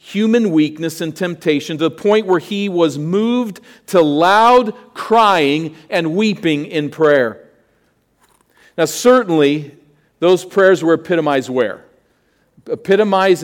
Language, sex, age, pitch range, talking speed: English, male, 50-69, 135-180 Hz, 115 wpm